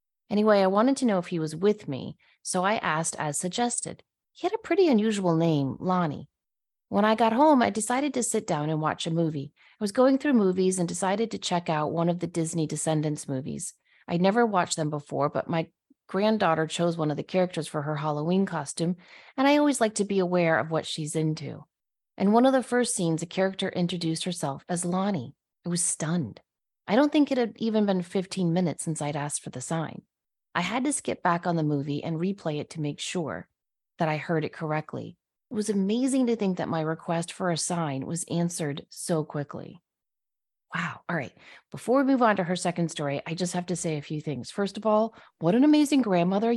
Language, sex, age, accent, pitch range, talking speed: English, female, 30-49, American, 155-215 Hz, 220 wpm